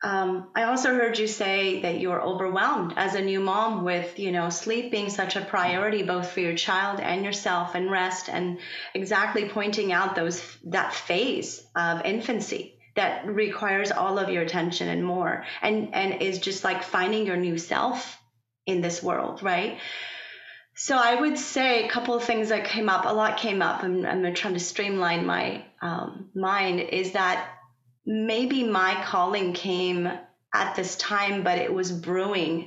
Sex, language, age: female, English, 30-49